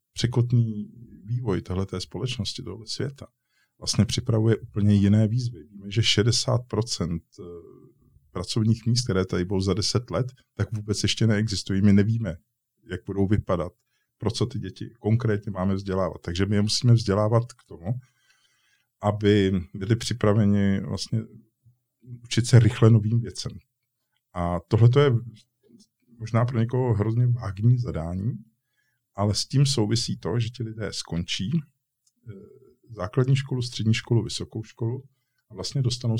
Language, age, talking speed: Czech, 50-69, 135 wpm